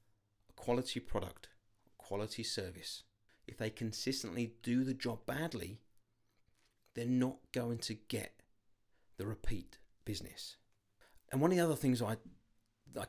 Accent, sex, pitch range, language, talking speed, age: British, male, 105-125 Hz, English, 125 wpm, 40-59